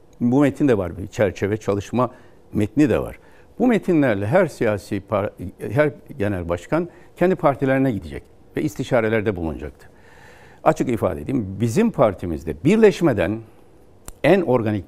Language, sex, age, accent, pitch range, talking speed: Turkish, male, 60-79, native, 105-140 Hz, 130 wpm